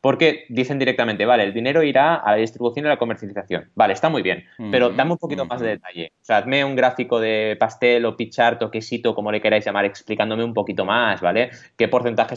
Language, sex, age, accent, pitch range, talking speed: Spanish, male, 20-39, Spanish, 105-130 Hz, 225 wpm